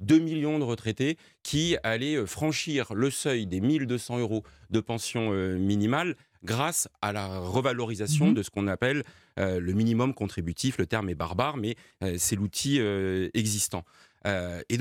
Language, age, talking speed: French, 40-59, 145 wpm